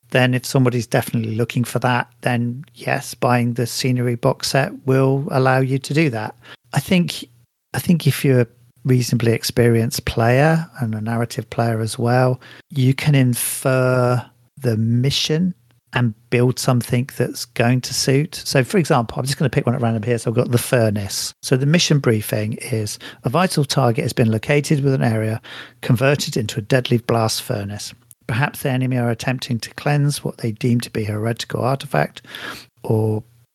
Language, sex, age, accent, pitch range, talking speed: English, male, 40-59, British, 115-135 Hz, 180 wpm